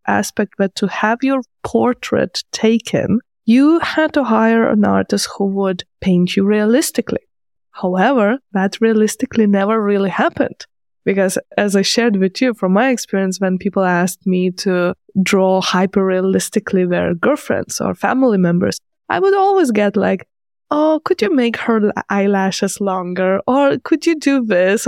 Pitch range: 190-235 Hz